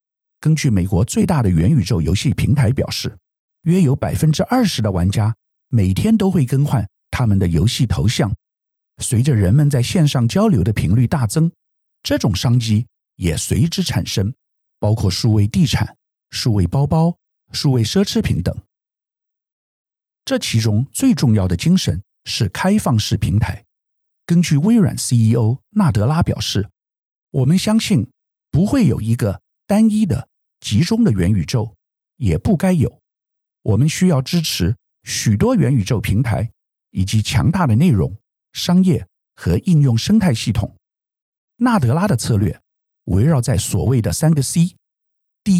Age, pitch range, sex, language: 50-69, 105-175 Hz, male, Chinese